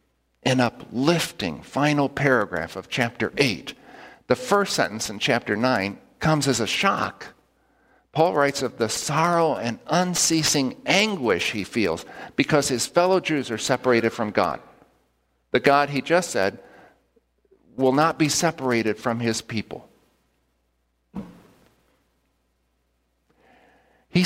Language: English